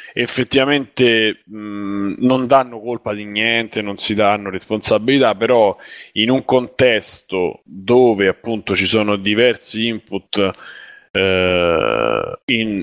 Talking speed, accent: 110 wpm, native